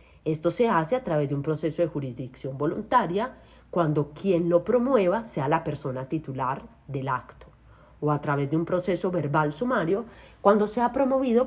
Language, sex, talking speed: Spanish, female, 170 wpm